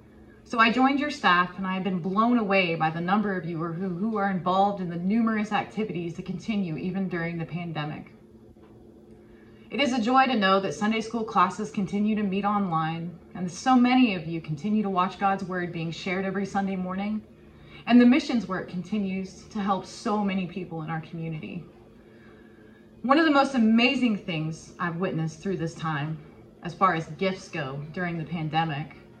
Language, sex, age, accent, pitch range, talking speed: English, female, 20-39, American, 165-215 Hz, 185 wpm